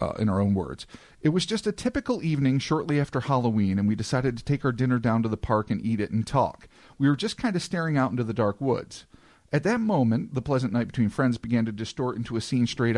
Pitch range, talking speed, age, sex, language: 115-165 Hz, 260 wpm, 40-59, male, English